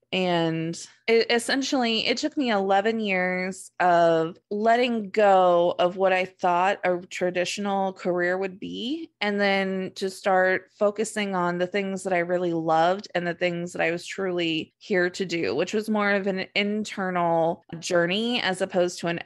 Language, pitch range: English, 175-215 Hz